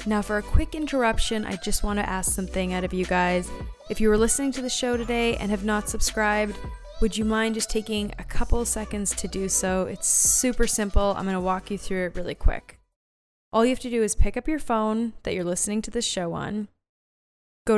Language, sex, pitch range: English, female, 190-240 Hz